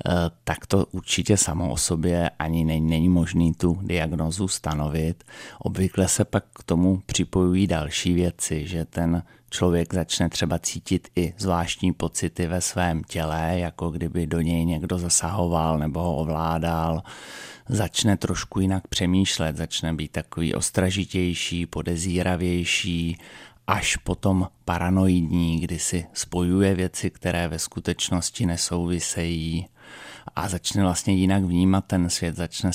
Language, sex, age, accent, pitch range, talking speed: Czech, male, 30-49, native, 85-95 Hz, 125 wpm